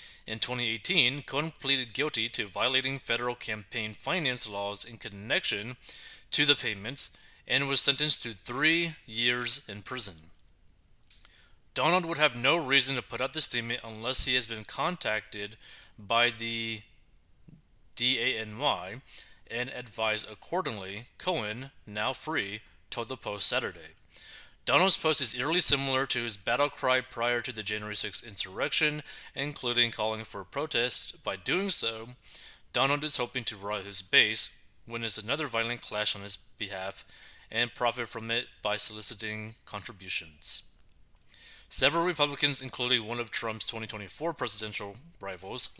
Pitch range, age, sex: 105-135 Hz, 30-49, male